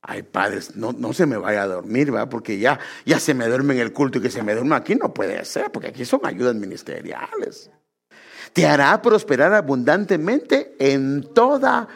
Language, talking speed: English, 195 wpm